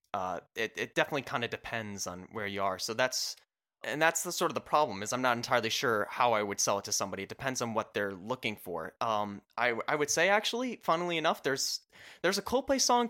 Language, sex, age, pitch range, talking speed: English, male, 20-39, 115-180 Hz, 240 wpm